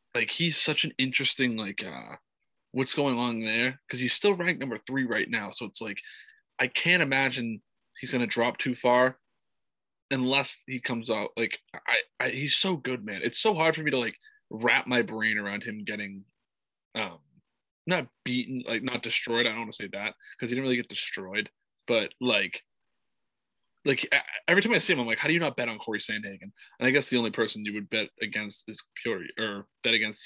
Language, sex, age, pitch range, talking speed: English, male, 20-39, 110-145 Hz, 210 wpm